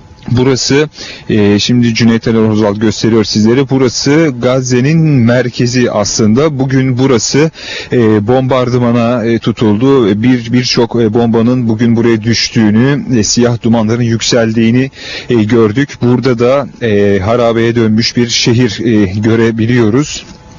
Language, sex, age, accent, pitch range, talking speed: Turkish, male, 30-49, native, 115-135 Hz, 115 wpm